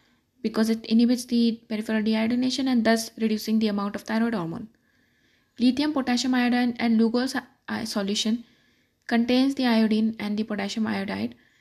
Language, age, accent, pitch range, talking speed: English, 20-39, Indian, 220-250 Hz, 150 wpm